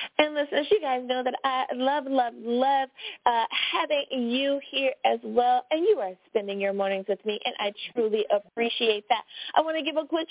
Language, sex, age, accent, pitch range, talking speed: English, female, 30-49, American, 215-300 Hz, 210 wpm